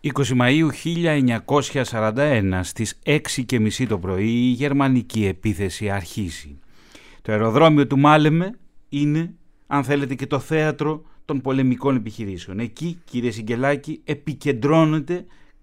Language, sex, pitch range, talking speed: Greek, male, 110-145 Hz, 110 wpm